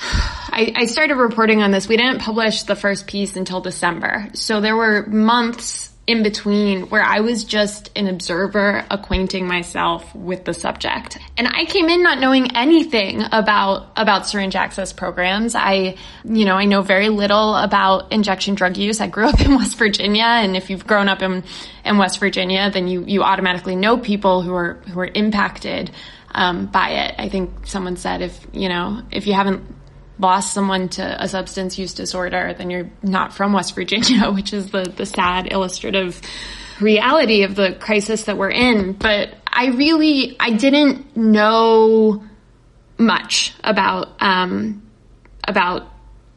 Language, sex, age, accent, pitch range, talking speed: English, female, 20-39, American, 185-220 Hz, 165 wpm